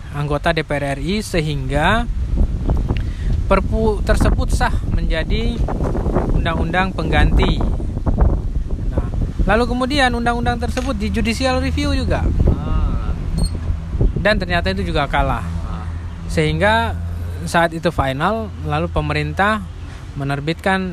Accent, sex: native, male